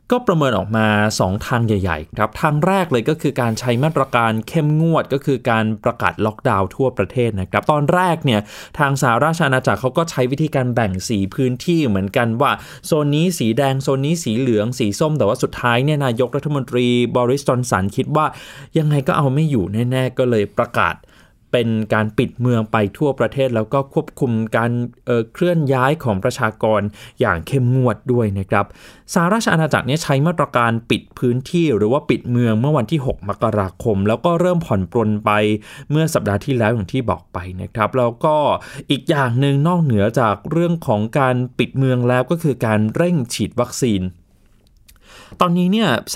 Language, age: Thai, 20-39